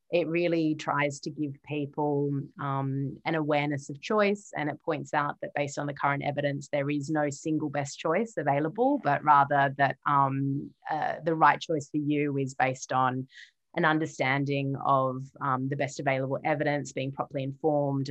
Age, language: 30-49, English